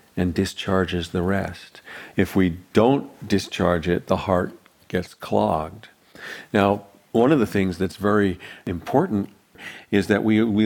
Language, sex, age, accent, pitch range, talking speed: English, male, 50-69, American, 90-105 Hz, 140 wpm